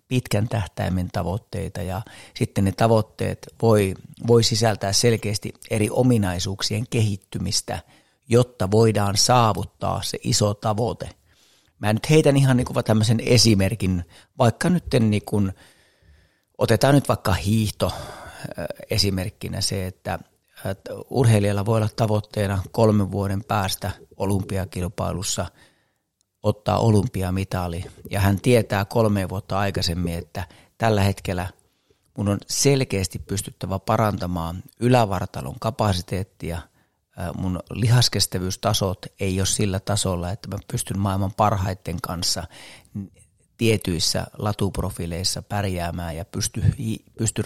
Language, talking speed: Finnish, 100 wpm